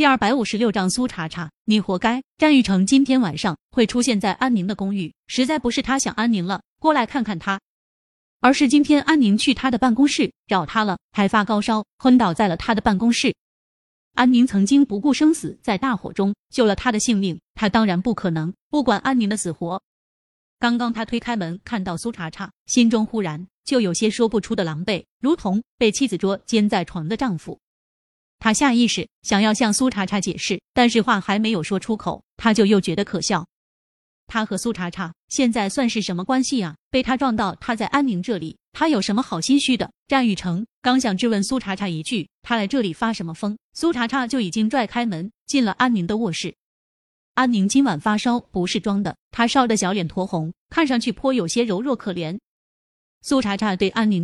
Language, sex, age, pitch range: Chinese, female, 20-39, 190-245 Hz